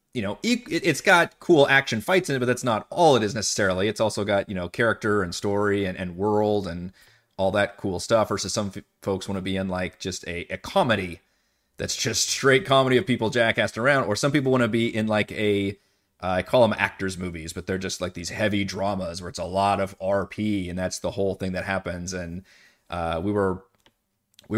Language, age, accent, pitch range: English, 30-49, American, 95-120 Hz